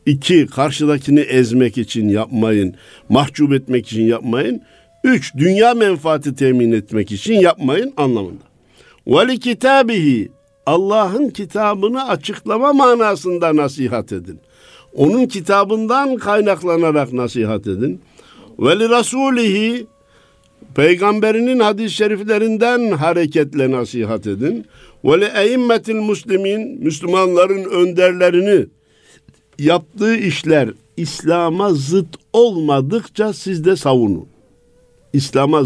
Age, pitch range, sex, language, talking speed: 60-79, 140-210 Hz, male, Turkish, 85 wpm